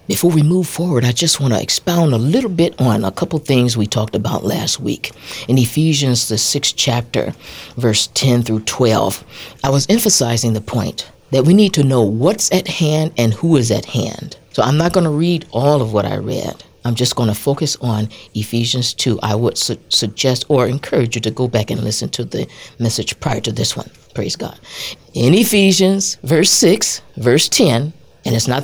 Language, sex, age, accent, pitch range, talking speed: English, female, 50-69, American, 115-155 Hz, 205 wpm